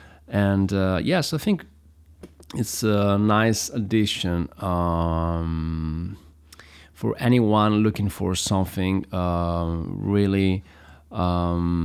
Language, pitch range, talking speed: English, 85-110 Hz, 90 wpm